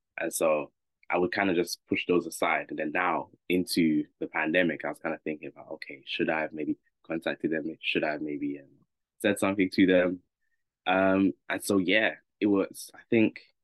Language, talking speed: English, 200 wpm